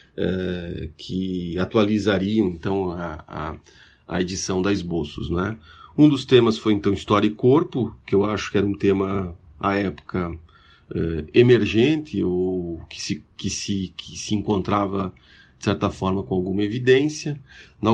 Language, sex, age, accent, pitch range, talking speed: English, male, 40-59, Brazilian, 90-110 Hz, 135 wpm